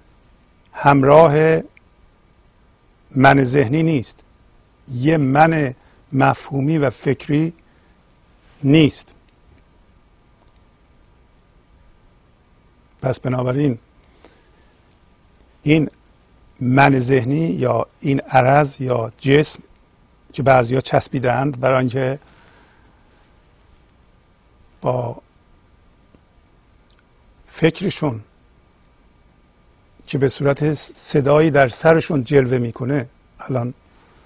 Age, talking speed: 50-69, 65 wpm